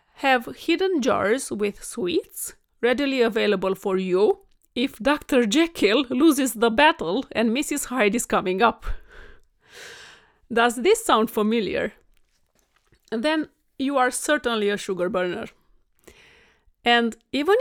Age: 40-59